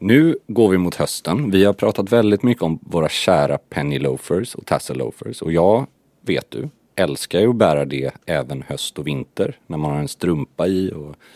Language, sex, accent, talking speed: Swedish, male, native, 200 wpm